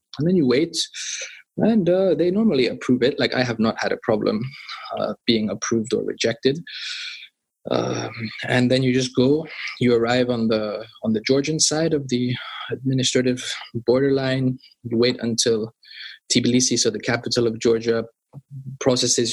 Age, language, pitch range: 20-39, English, 115-130 Hz